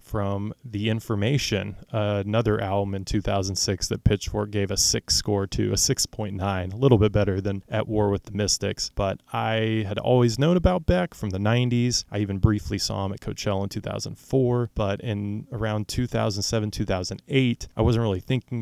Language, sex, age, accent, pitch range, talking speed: English, male, 20-39, American, 100-110 Hz, 170 wpm